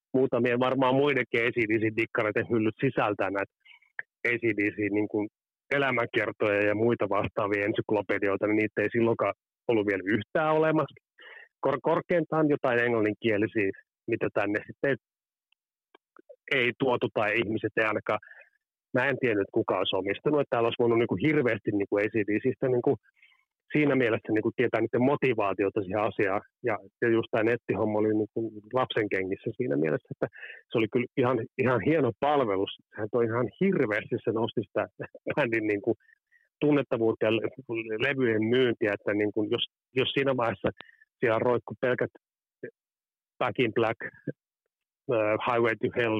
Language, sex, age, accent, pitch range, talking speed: Finnish, male, 30-49, native, 110-145 Hz, 135 wpm